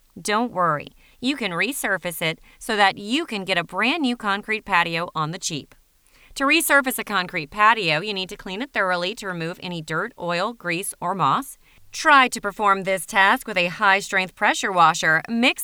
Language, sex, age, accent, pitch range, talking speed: English, female, 30-49, American, 175-230 Hz, 190 wpm